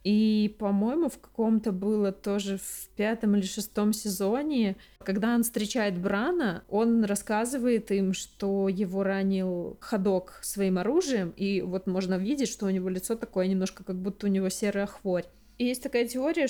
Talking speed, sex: 155 wpm, female